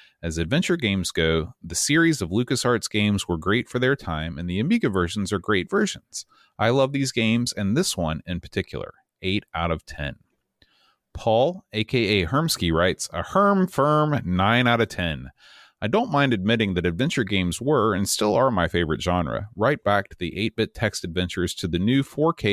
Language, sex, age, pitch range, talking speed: English, male, 30-49, 85-115 Hz, 185 wpm